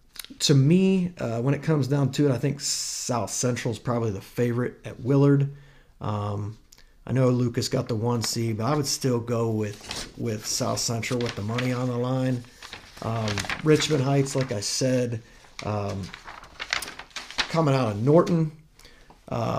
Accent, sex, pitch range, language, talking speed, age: American, male, 110-135 Hz, English, 160 wpm, 40-59